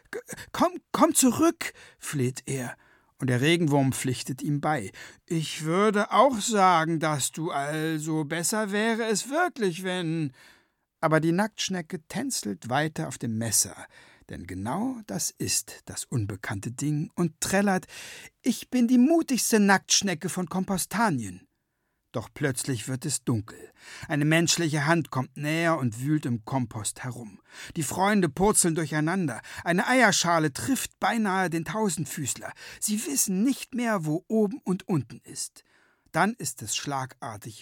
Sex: male